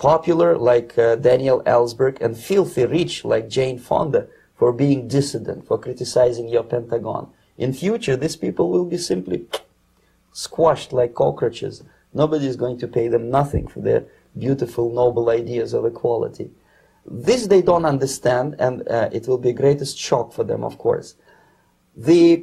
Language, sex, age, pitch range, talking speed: English, male, 30-49, 125-170 Hz, 160 wpm